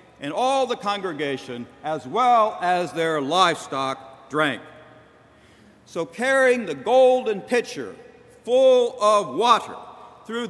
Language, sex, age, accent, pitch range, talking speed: English, male, 60-79, American, 180-235 Hz, 110 wpm